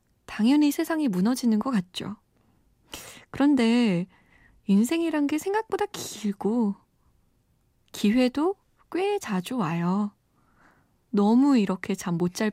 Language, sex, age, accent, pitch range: Korean, female, 20-39, native, 195-280 Hz